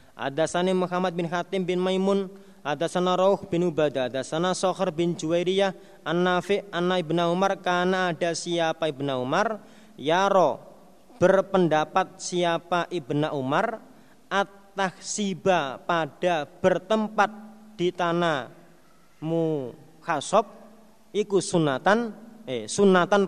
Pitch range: 165-195 Hz